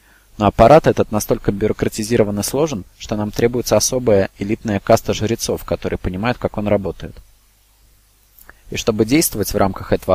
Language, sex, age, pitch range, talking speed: Russian, male, 20-39, 100-115 Hz, 150 wpm